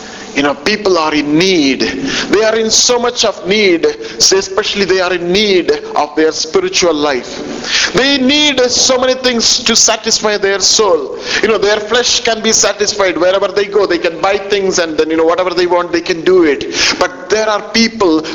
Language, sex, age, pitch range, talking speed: English, male, 50-69, 190-240 Hz, 195 wpm